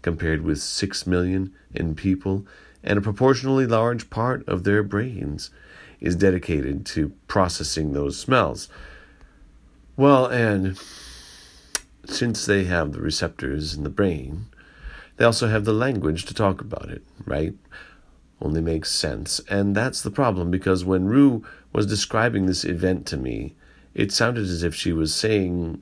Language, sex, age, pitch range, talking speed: English, male, 40-59, 80-105 Hz, 145 wpm